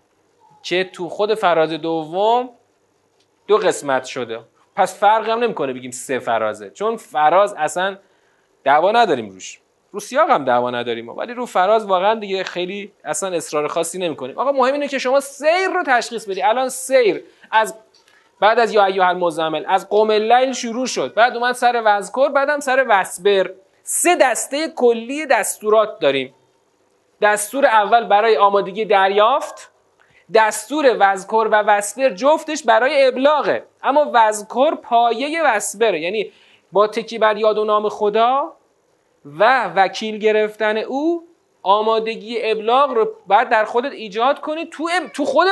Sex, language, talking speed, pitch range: male, Persian, 140 wpm, 195-285 Hz